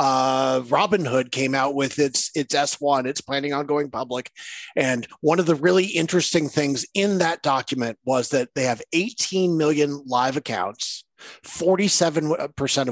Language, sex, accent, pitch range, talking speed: English, male, American, 125-165 Hz, 150 wpm